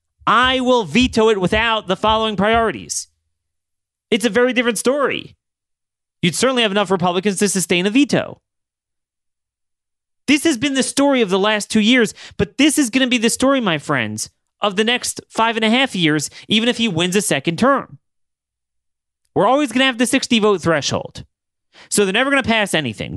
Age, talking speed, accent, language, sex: 30-49, 185 wpm, American, English, male